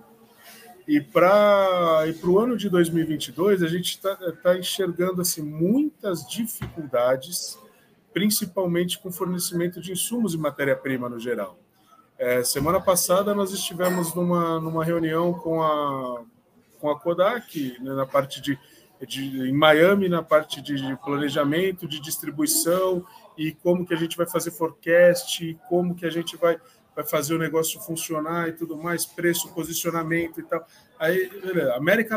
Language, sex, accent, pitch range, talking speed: Portuguese, male, Brazilian, 155-195 Hz, 145 wpm